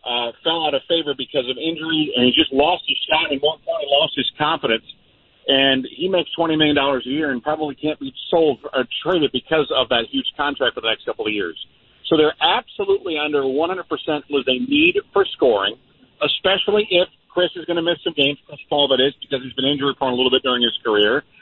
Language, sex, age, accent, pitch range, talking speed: English, male, 50-69, American, 130-165 Hz, 220 wpm